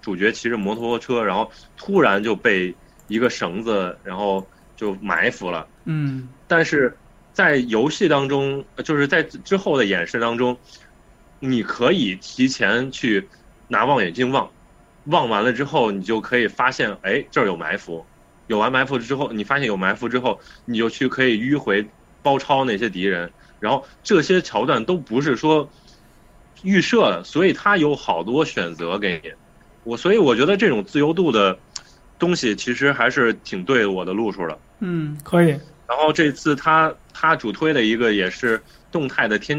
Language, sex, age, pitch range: Chinese, male, 20-39, 115-150 Hz